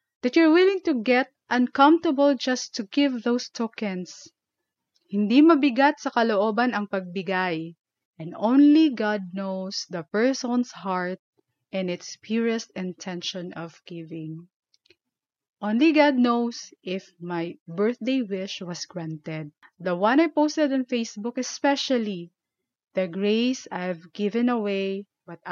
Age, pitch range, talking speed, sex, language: 20-39, 195-280 Hz, 120 wpm, female, English